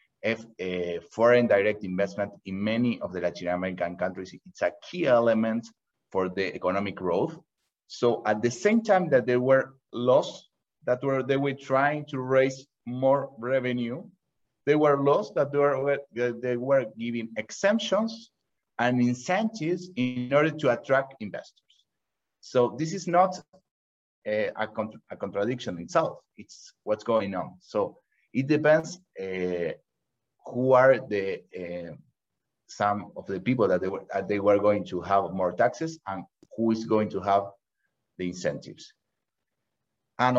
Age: 30-49